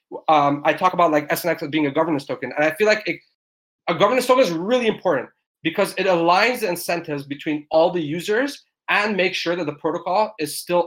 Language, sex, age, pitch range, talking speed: English, male, 20-39, 140-175 Hz, 215 wpm